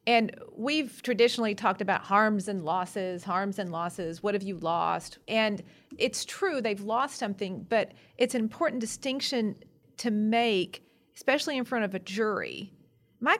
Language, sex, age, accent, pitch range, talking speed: English, female, 40-59, American, 190-235 Hz, 155 wpm